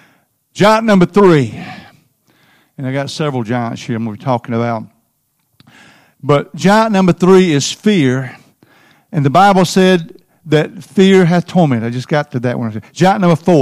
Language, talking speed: English, 165 wpm